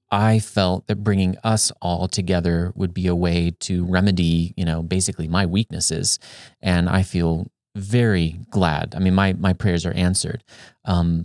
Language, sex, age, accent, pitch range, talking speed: English, male, 30-49, American, 85-100 Hz, 165 wpm